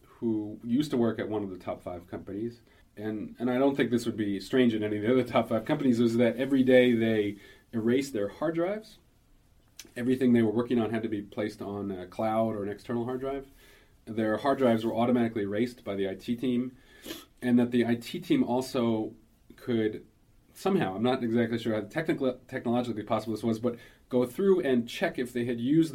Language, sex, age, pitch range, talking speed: English, male, 30-49, 110-125 Hz, 210 wpm